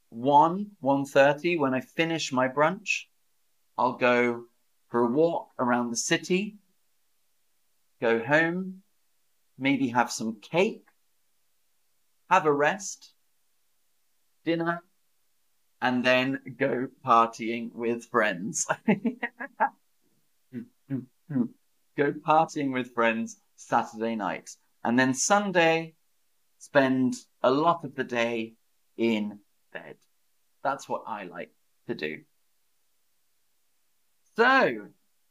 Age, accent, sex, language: 40-59, British, male, English